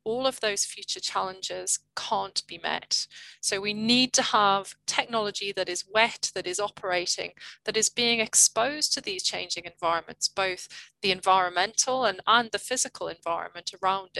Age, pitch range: 30-49, 185-215 Hz